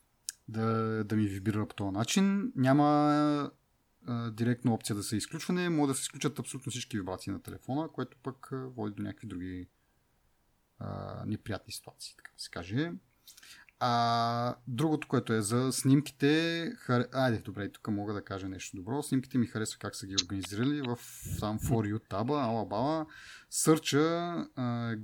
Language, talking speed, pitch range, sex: Bulgarian, 160 wpm, 105-140 Hz, male